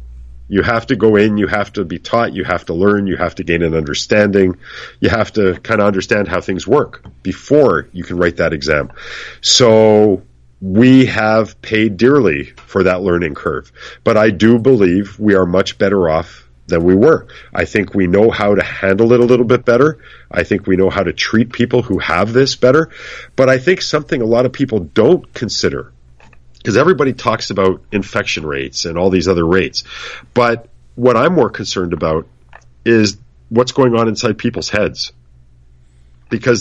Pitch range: 85-120 Hz